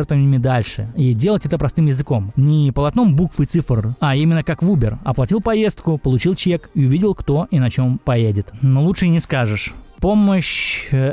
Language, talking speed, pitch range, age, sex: Russian, 175 wpm, 120-155 Hz, 20-39, male